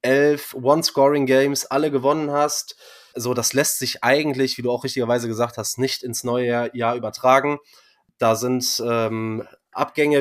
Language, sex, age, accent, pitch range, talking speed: German, male, 20-39, German, 120-145 Hz, 155 wpm